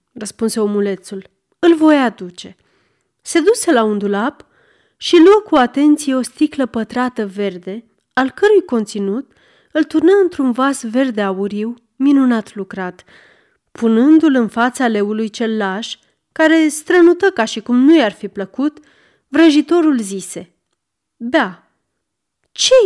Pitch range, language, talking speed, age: 205-305 Hz, Romanian, 125 wpm, 30-49